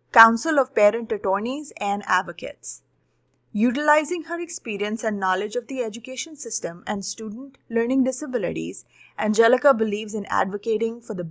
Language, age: English, 30-49